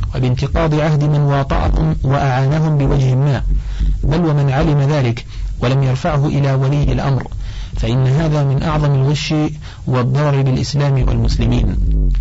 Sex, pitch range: male, 130-150 Hz